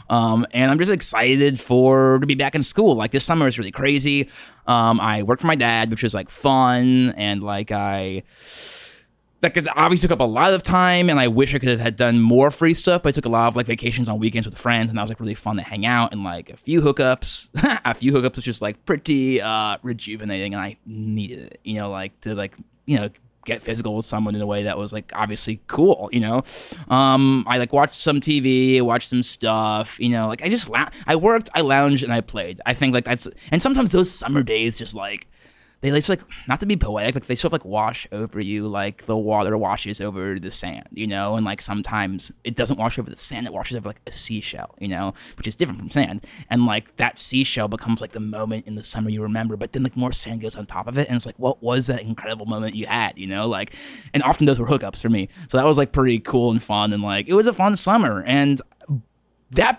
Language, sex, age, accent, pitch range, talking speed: English, male, 20-39, American, 105-140 Hz, 250 wpm